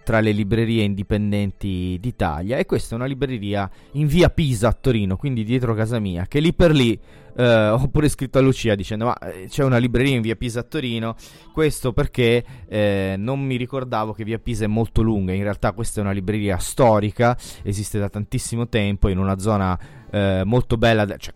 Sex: male